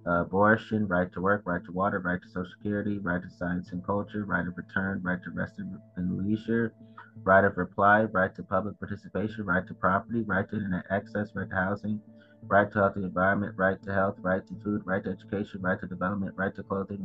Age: 20-39